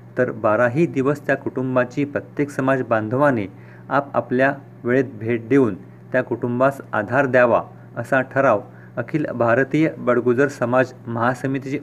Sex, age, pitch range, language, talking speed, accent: male, 40-59, 105-135 Hz, Marathi, 120 wpm, native